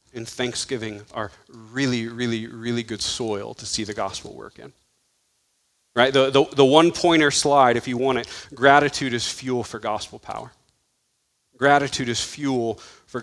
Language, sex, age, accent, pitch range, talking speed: English, male, 30-49, American, 115-145 Hz, 155 wpm